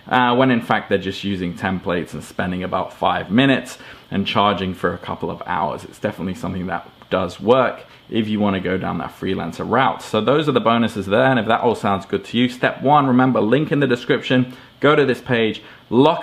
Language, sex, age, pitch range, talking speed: English, male, 20-39, 100-130 Hz, 225 wpm